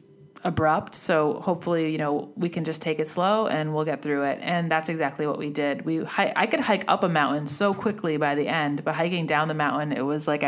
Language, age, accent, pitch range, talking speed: English, 20-39, American, 150-190 Hz, 245 wpm